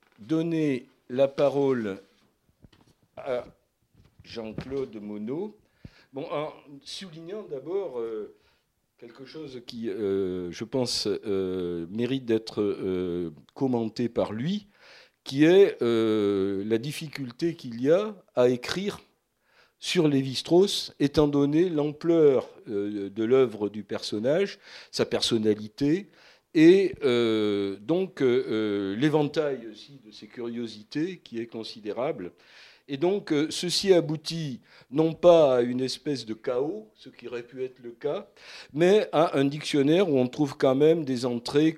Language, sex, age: French, male, 50-69